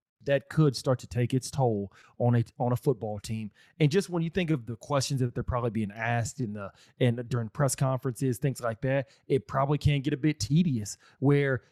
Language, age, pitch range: English, 30-49, 125-160 Hz